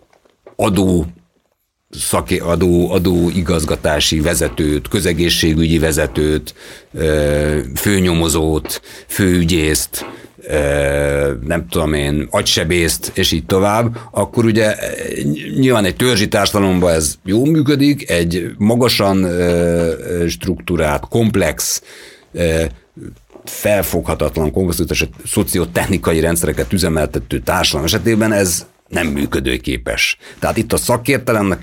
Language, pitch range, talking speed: Hungarian, 80-100 Hz, 80 wpm